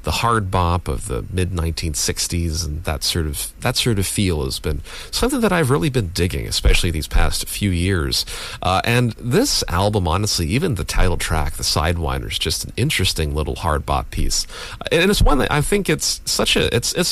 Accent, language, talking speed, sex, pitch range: American, English, 205 wpm, male, 80-110 Hz